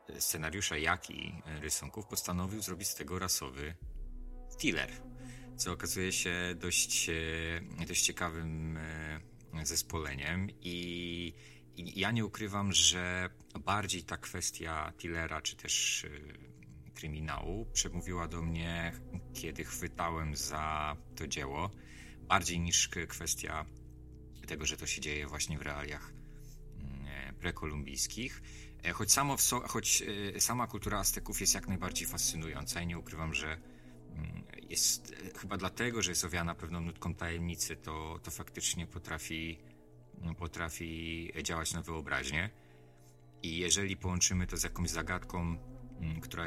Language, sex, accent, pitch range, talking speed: Polish, male, native, 75-90 Hz, 115 wpm